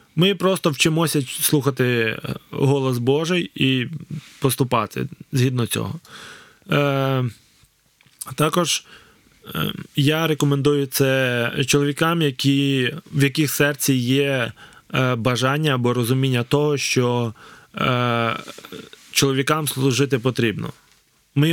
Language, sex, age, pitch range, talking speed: Ukrainian, male, 20-39, 125-150 Hz, 80 wpm